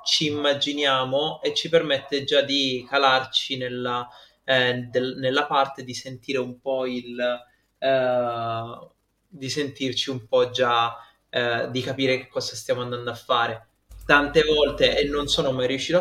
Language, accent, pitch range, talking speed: Italian, native, 125-140 Hz, 140 wpm